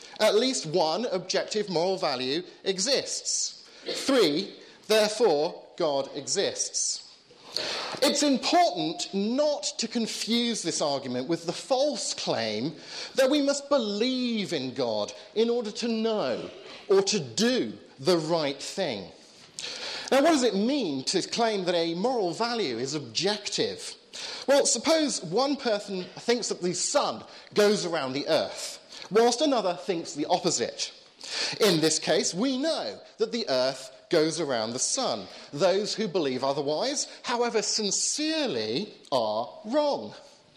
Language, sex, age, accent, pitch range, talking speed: English, male, 40-59, British, 175-265 Hz, 130 wpm